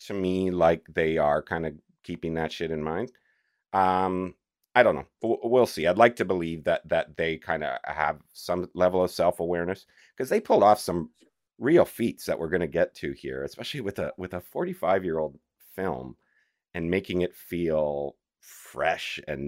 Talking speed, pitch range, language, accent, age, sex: 190 wpm, 75-95 Hz, English, American, 40-59, male